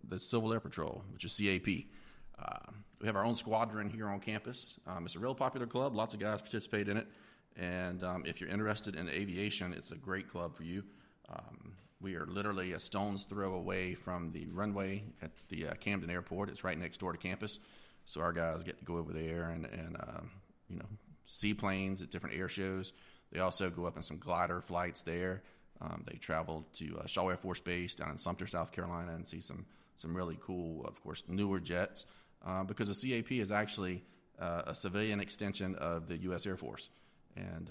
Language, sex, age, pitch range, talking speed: English, male, 30-49, 85-100 Hz, 210 wpm